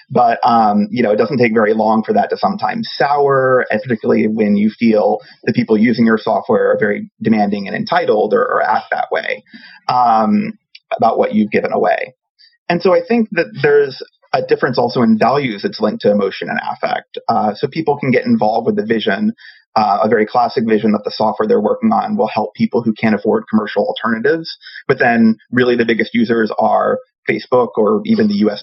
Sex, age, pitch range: male, 30-49, 170-240 Hz